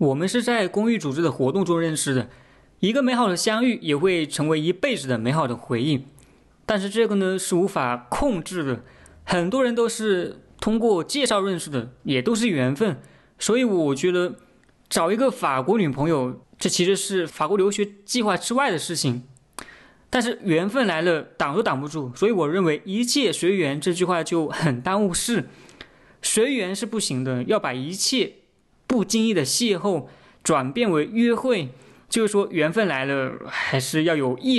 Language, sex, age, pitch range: Chinese, male, 20-39, 140-205 Hz